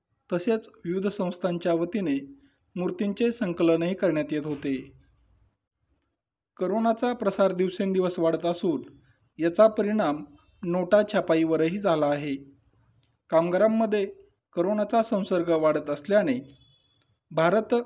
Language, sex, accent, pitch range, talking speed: Marathi, male, native, 145-205 Hz, 85 wpm